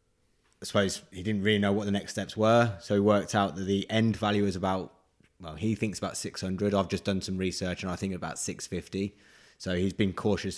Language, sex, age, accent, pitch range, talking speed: English, male, 20-39, British, 90-100 Hz, 225 wpm